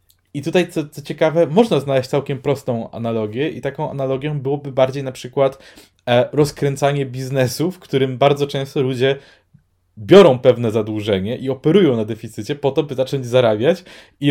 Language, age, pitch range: Polish, 20-39, 120-140 Hz